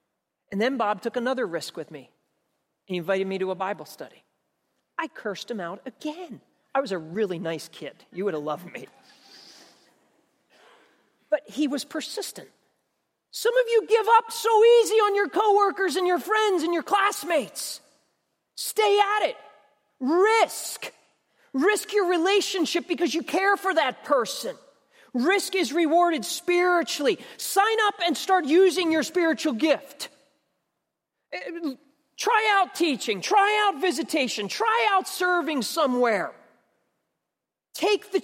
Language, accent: English, American